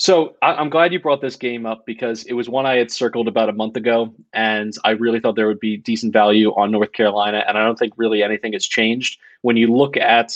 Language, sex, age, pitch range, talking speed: English, male, 30-49, 110-125 Hz, 250 wpm